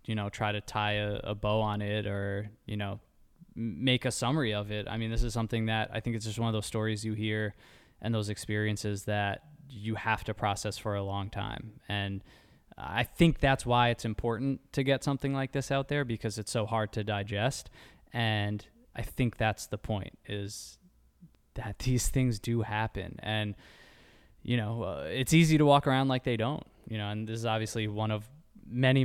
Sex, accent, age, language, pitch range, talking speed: male, American, 20-39, English, 105-120 Hz, 205 wpm